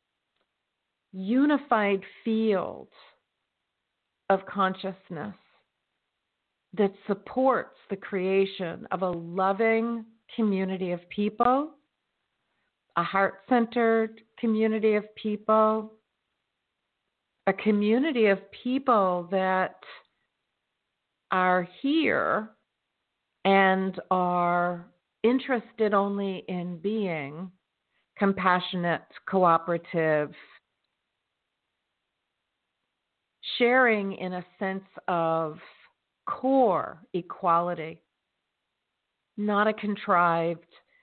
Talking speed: 65 wpm